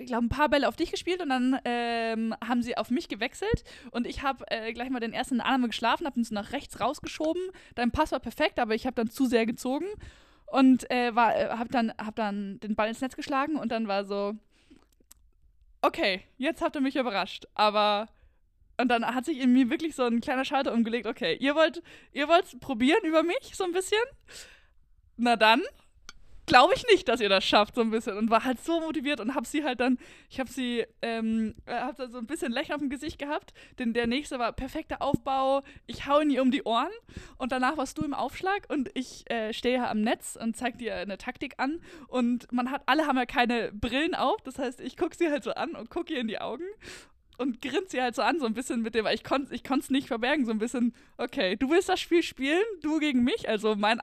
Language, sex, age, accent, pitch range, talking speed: German, female, 20-39, German, 235-300 Hz, 235 wpm